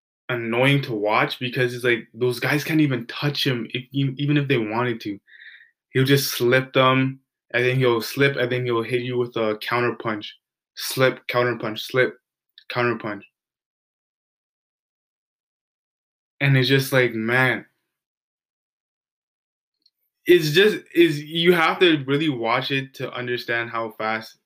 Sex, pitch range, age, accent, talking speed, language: male, 120-140 Hz, 20-39, American, 145 wpm, English